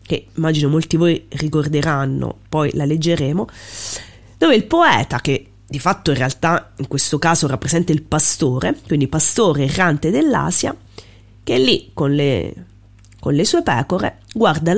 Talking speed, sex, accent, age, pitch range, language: 140 wpm, female, native, 30-49, 120-185 Hz, Italian